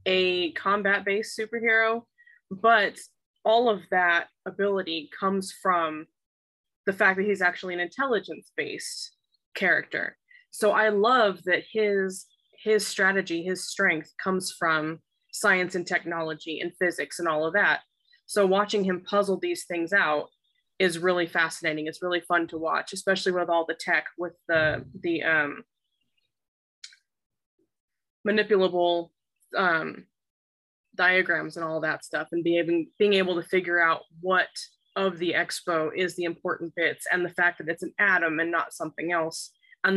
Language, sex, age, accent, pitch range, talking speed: English, female, 20-39, American, 165-200 Hz, 145 wpm